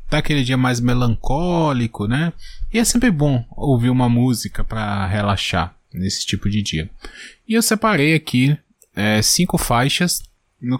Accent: Brazilian